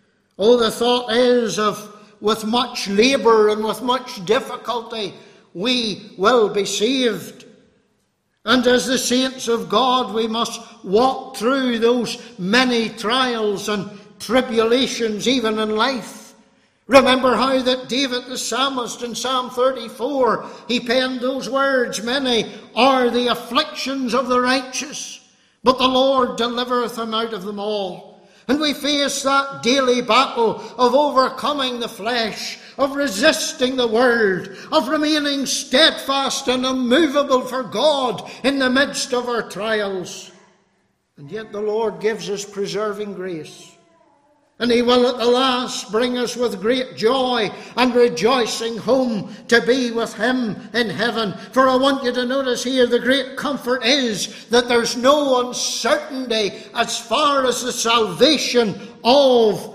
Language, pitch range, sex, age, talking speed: English, 215-255 Hz, male, 60-79, 140 wpm